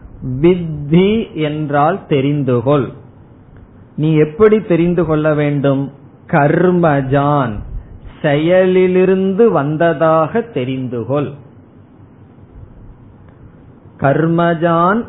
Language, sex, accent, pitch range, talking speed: Tamil, male, native, 130-175 Hz, 45 wpm